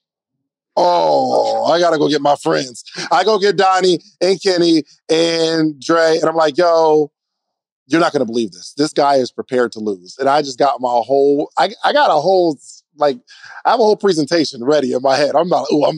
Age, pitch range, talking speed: 20-39, 140-210 Hz, 215 wpm